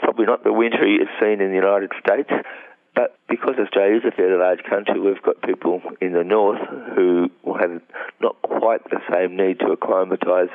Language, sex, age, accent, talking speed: English, male, 50-69, Australian, 195 wpm